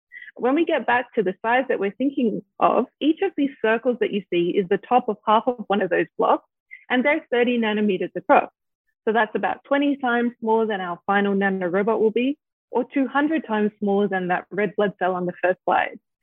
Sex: female